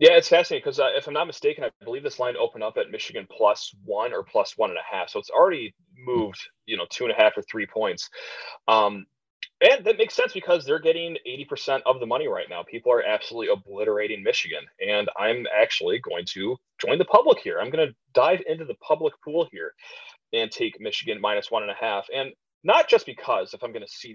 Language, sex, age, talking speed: English, male, 30-49, 230 wpm